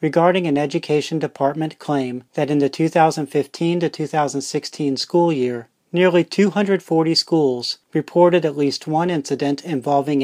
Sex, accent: male, American